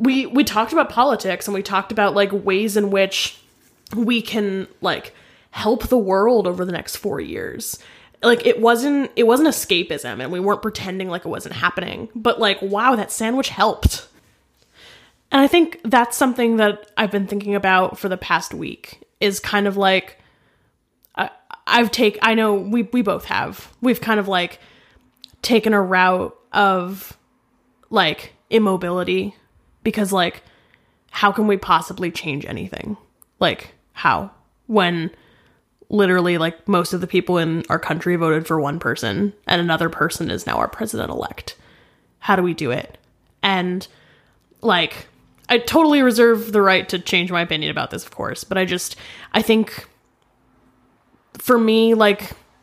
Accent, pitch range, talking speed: American, 180-225 Hz, 160 wpm